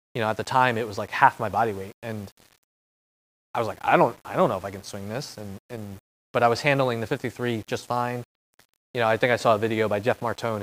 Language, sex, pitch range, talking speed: English, male, 105-130 Hz, 270 wpm